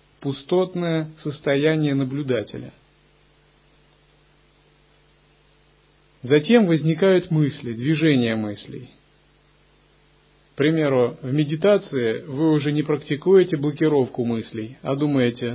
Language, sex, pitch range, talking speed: Russian, male, 130-160 Hz, 75 wpm